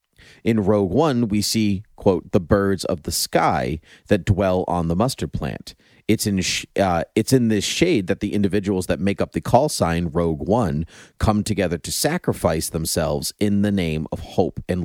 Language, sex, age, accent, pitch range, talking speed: English, male, 30-49, American, 85-110 Hz, 190 wpm